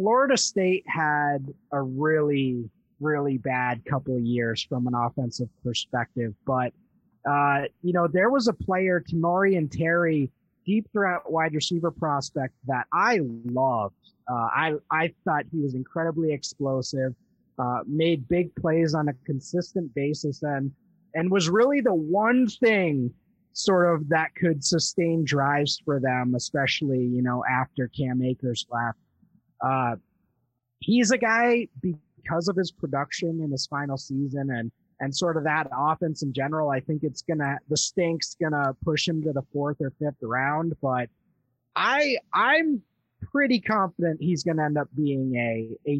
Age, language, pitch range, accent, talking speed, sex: 30-49, English, 135-175 Hz, American, 155 wpm, male